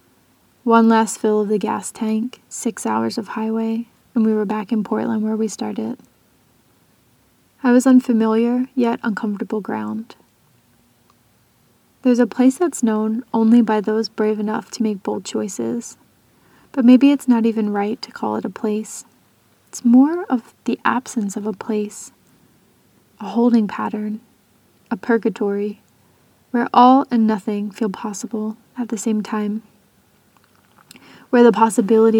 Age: 20-39